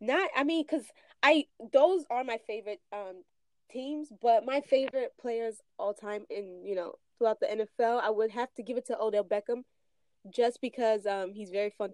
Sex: female